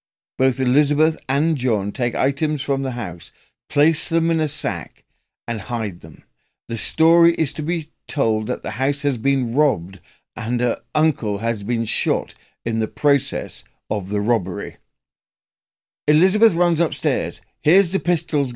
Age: 50-69